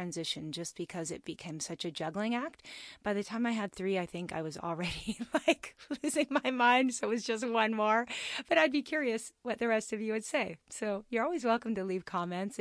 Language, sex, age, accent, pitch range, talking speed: English, female, 30-49, American, 195-250 Hz, 230 wpm